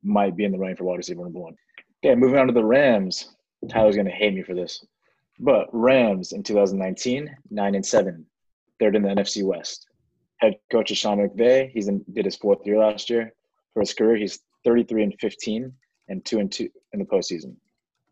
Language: English